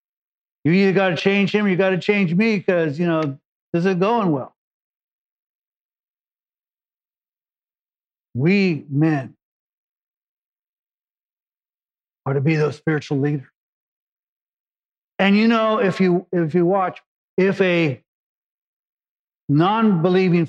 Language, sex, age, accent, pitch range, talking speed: English, male, 50-69, American, 140-175 Hz, 105 wpm